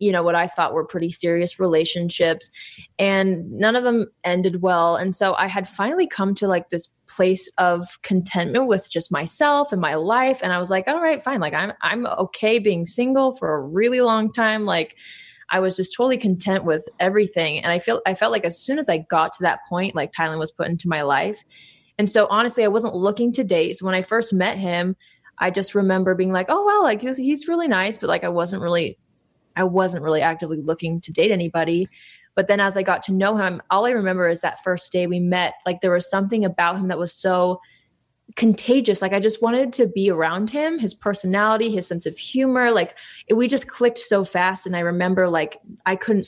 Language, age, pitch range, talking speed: English, 20-39, 175-220 Hz, 225 wpm